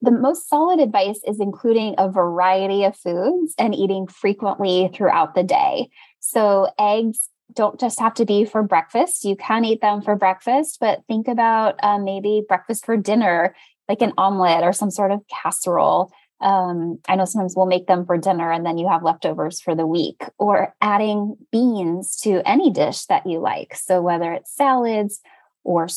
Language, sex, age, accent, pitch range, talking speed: English, female, 10-29, American, 185-225 Hz, 180 wpm